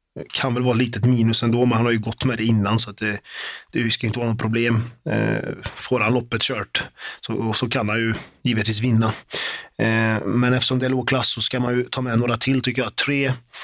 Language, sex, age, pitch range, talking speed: Swedish, male, 30-49, 110-125 Hz, 240 wpm